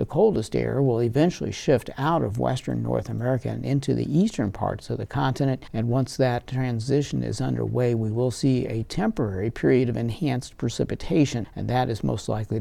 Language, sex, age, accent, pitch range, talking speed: English, male, 60-79, American, 110-140 Hz, 185 wpm